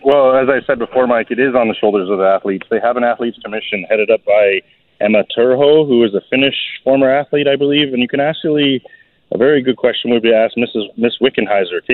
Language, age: English, 30-49